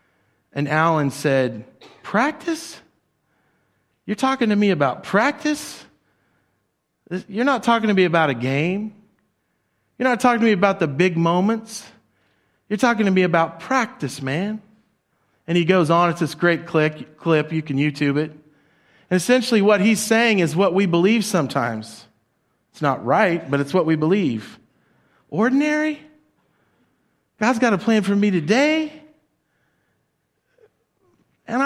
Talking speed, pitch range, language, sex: 140 wpm, 155-225 Hz, English, male